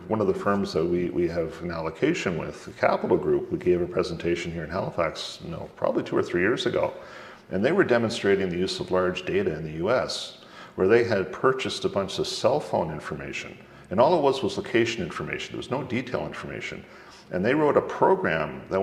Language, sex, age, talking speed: English, male, 50-69, 220 wpm